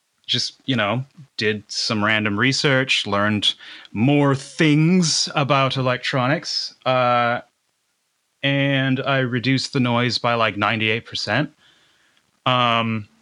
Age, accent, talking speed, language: 30-49, American, 100 wpm, English